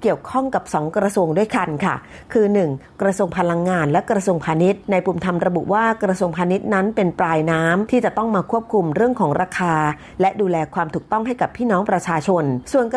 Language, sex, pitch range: Thai, female, 170-220 Hz